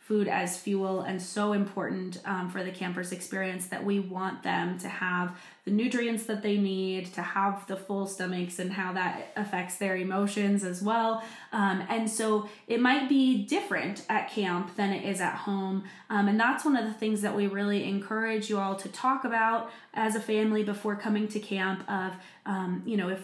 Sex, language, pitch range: female, English, 190-210 Hz